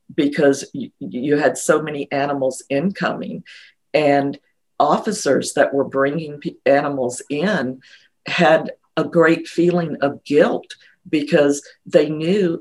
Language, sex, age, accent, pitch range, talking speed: English, female, 50-69, American, 145-175 Hz, 110 wpm